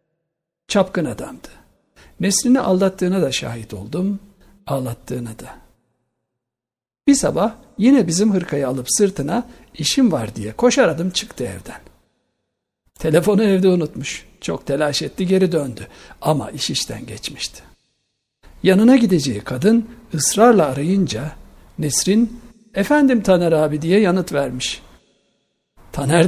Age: 60-79